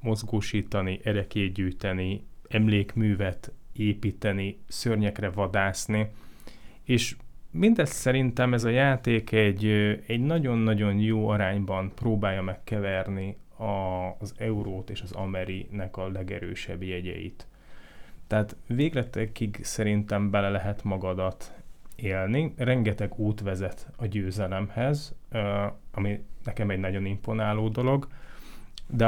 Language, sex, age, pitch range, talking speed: Hungarian, male, 30-49, 95-110 Hz, 100 wpm